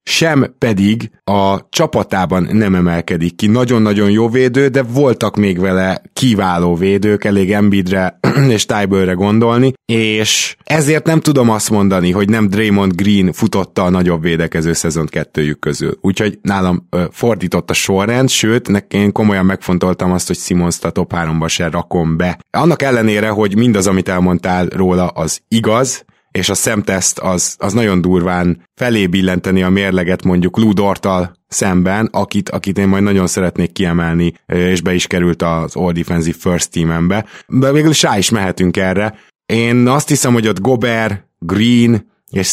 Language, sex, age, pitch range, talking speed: Hungarian, male, 20-39, 90-110 Hz, 150 wpm